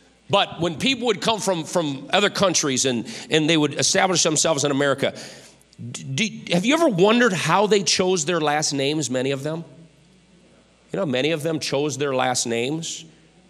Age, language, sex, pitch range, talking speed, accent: 40-59, English, male, 135-185 Hz, 180 wpm, American